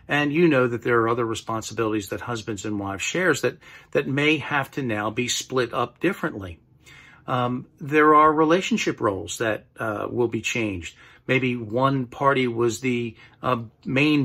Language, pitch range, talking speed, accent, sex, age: English, 110-140 Hz, 170 wpm, American, male, 40-59